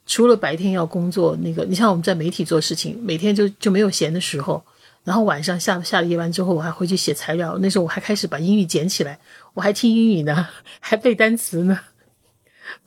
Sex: female